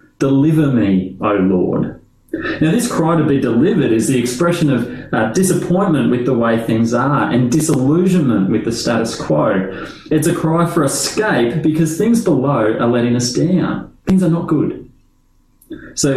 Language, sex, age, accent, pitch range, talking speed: English, male, 30-49, Australian, 115-150 Hz, 165 wpm